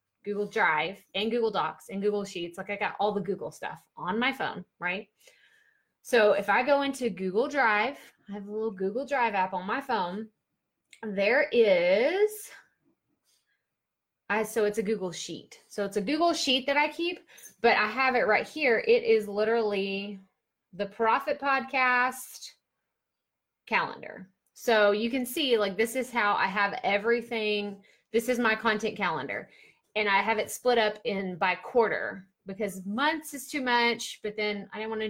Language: English